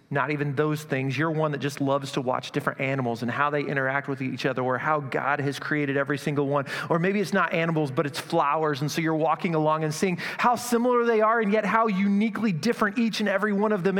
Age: 30-49